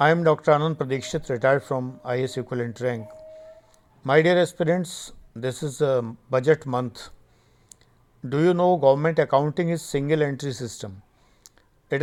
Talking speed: 145 wpm